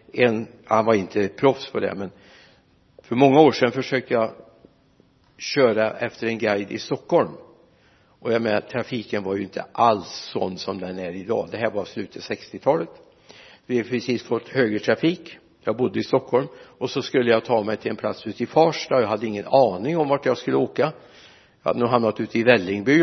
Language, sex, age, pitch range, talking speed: Swedish, male, 60-79, 110-140 Hz, 200 wpm